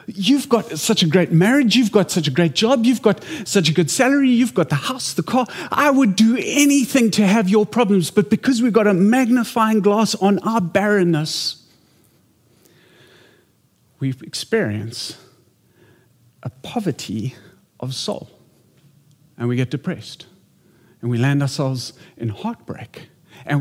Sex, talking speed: male, 150 wpm